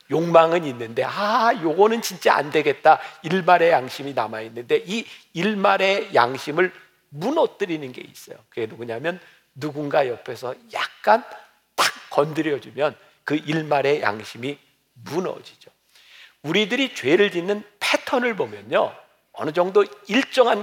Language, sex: Korean, male